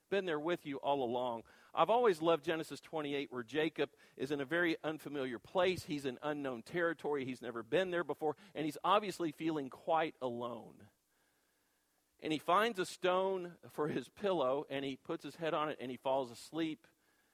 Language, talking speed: English, 185 wpm